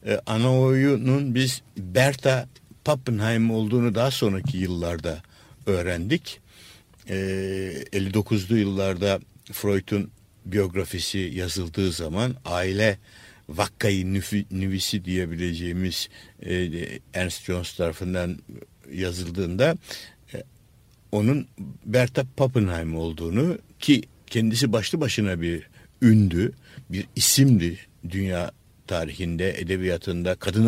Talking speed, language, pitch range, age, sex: 85 wpm, Turkish, 95-125 Hz, 60-79, male